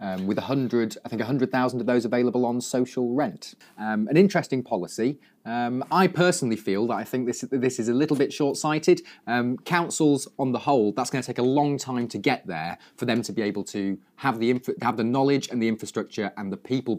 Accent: British